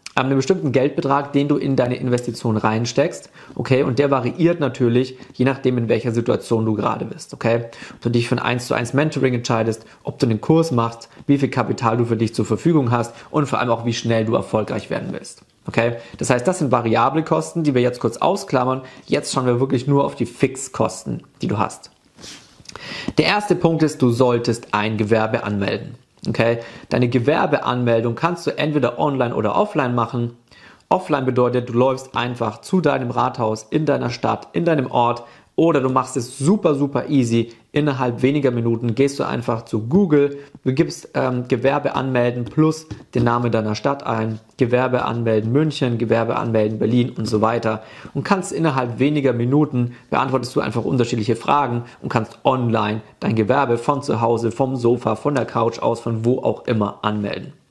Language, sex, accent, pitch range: German, male, German, 115-140 Hz